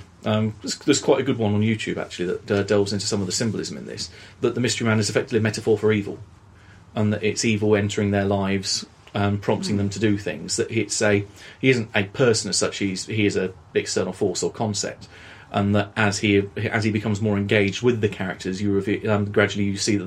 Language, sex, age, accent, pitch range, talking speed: English, male, 30-49, British, 100-110 Hz, 235 wpm